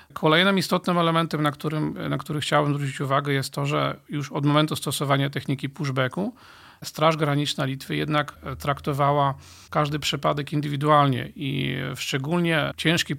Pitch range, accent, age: 130-155 Hz, native, 40-59